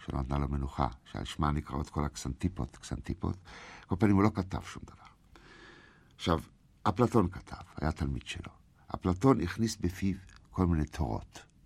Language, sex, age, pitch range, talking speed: Hebrew, male, 60-79, 80-120 Hz, 145 wpm